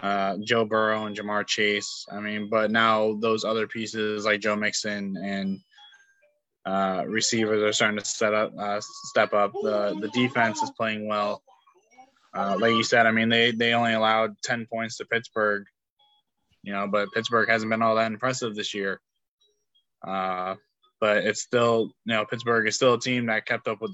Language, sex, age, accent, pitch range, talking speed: English, male, 20-39, American, 105-135 Hz, 185 wpm